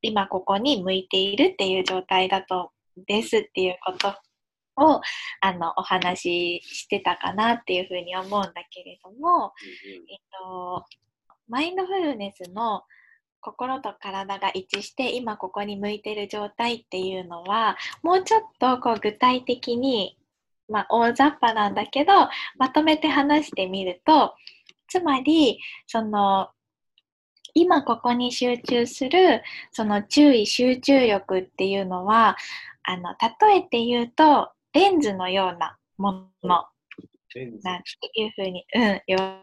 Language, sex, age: Japanese, female, 10-29